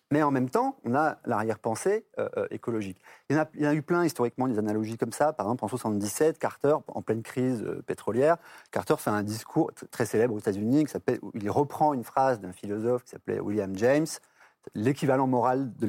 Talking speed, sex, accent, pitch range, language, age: 210 wpm, male, French, 110-165 Hz, French, 40-59